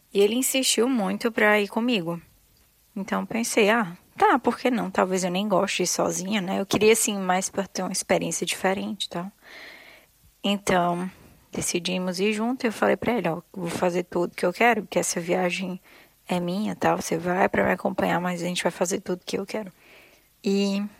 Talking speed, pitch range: 205 wpm, 180-220 Hz